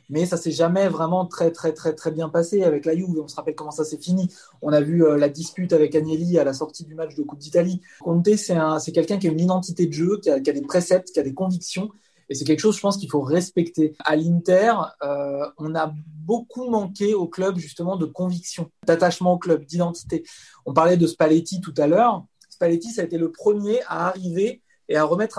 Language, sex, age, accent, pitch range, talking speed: French, male, 20-39, French, 155-190 Hz, 235 wpm